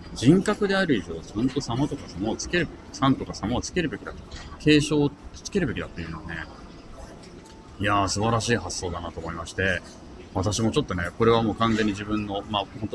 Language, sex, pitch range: Japanese, male, 90-120 Hz